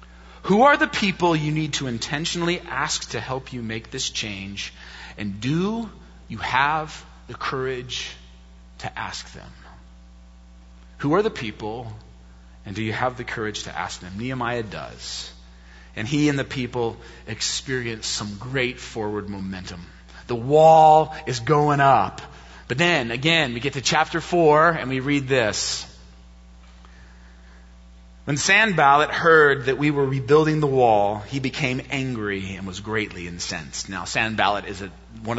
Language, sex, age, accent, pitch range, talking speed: English, male, 30-49, American, 85-140 Hz, 150 wpm